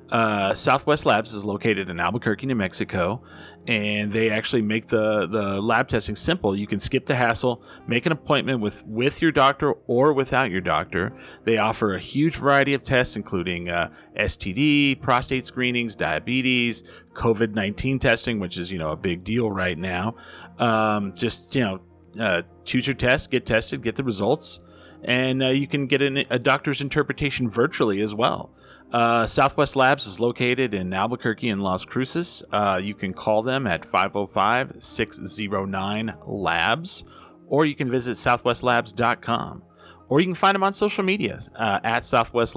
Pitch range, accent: 105-135 Hz, American